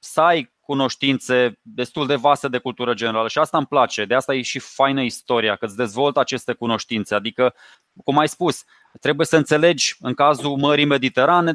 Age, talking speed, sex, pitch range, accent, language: 20-39, 180 wpm, male, 135-175 Hz, native, Romanian